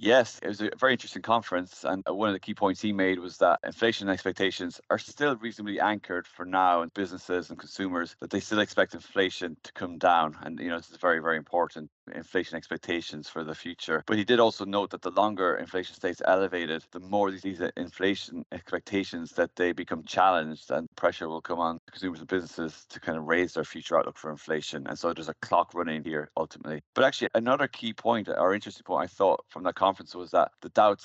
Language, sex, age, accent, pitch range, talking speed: English, male, 30-49, Irish, 80-95 Hz, 215 wpm